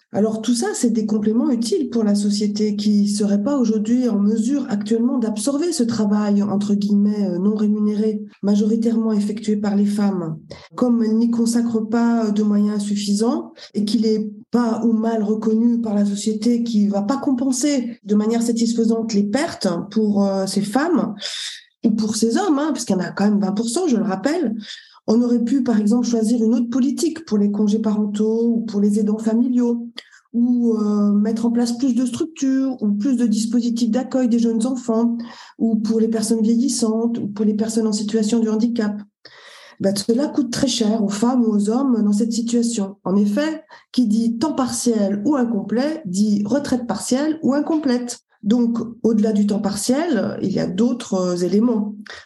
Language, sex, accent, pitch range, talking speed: French, female, French, 210-245 Hz, 185 wpm